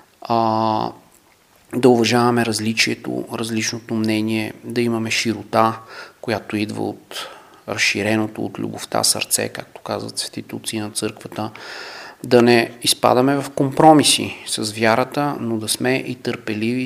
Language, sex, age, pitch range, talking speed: Bulgarian, male, 40-59, 110-120 Hz, 115 wpm